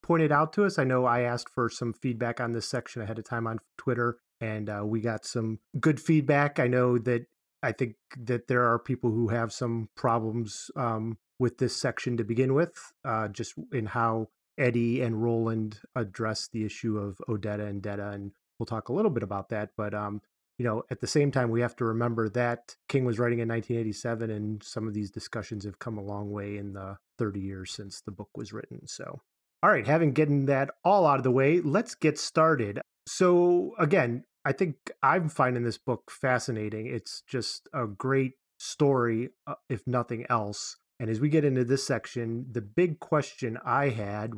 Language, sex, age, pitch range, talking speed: English, male, 30-49, 110-130 Hz, 200 wpm